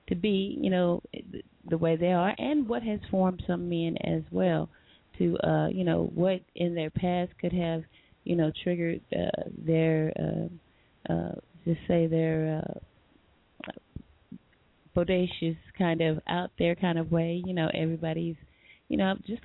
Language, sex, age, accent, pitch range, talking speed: English, female, 30-49, American, 160-200 Hz, 155 wpm